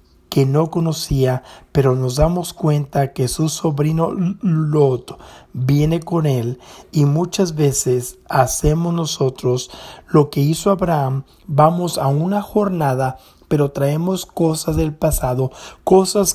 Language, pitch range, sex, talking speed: English, 135-175 Hz, male, 120 wpm